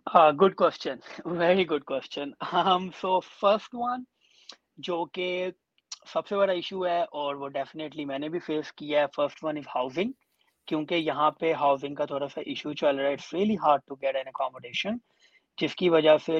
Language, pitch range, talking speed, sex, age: Urdu, 140-165 Hz, 60 wpm, male, 20-39